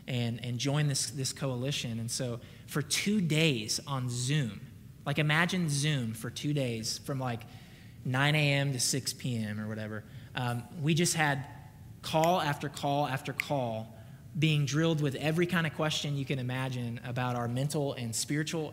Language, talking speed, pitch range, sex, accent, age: English, 165 wpm, 125-150 Hz, male, American, 20-39